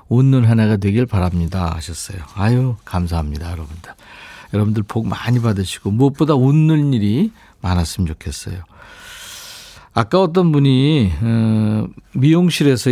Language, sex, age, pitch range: Korean, male, 50-69, 110-165 Hz